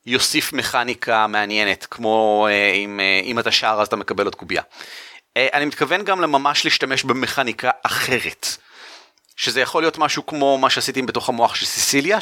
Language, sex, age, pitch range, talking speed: Hebrew, male, 30-49, 115-165 Hz, 165 wpm